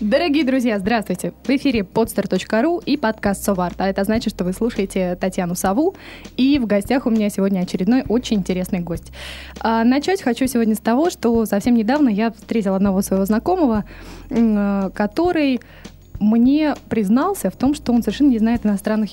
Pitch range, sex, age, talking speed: 205-250 Hz, female, 20-39, 165 wpm